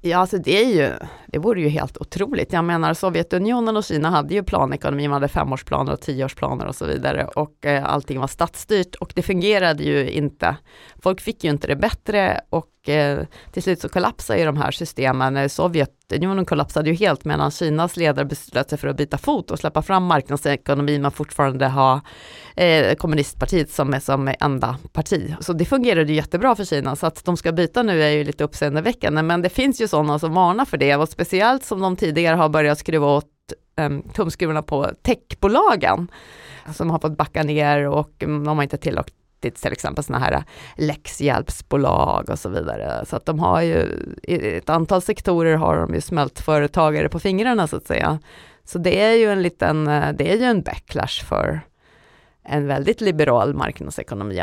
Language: Swedish